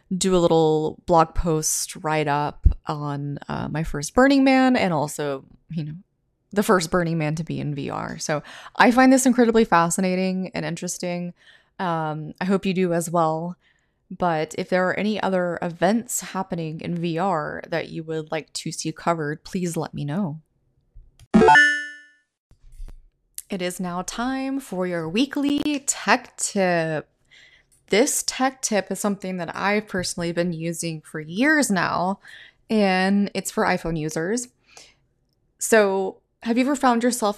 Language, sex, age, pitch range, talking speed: English, female, 20-39, 160-215 Hz, 150 wpm